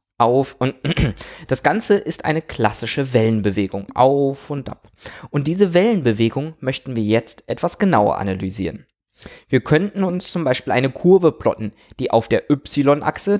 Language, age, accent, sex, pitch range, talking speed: German, 20-39, German, male, 115-165 Hz, 145 wpm